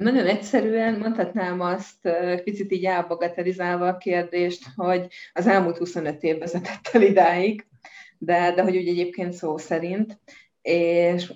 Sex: female